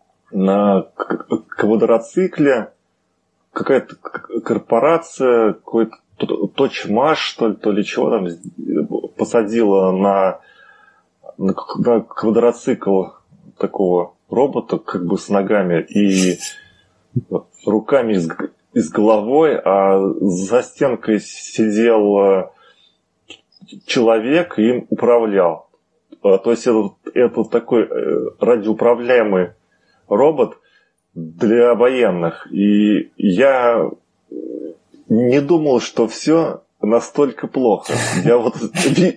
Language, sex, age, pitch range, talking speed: Russian, male, 20-39, 100-160 Hz, 85 wpm